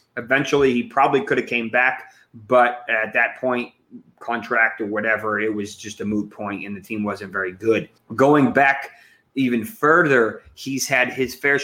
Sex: male